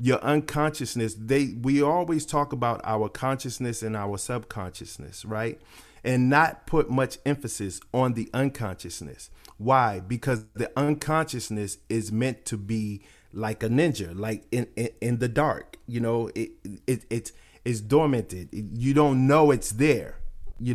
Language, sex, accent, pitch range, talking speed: English, male, American, 110-130 Hz, 145 wpm